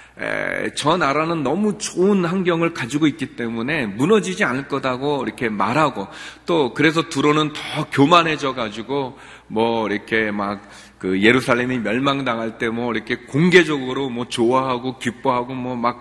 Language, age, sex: Korean, 40-59, male